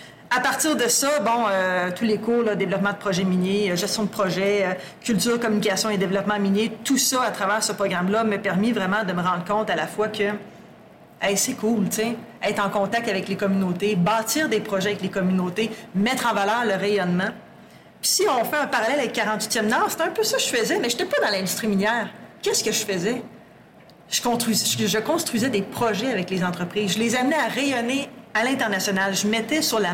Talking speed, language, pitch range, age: 215 wpm, French, 195-225 Hz, 30-49